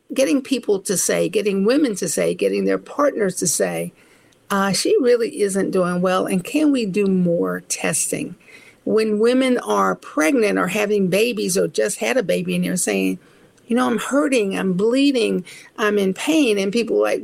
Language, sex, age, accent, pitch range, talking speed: English, female, 50-69, American, 185-255 Hz, 185 wpm